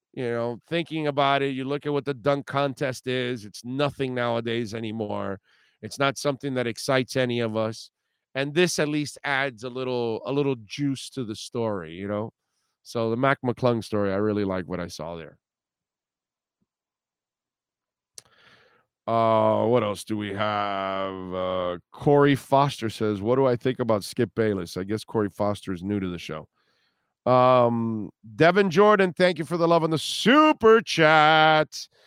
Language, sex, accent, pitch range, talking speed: English, male, American, 110-145 Hz, 170 wpm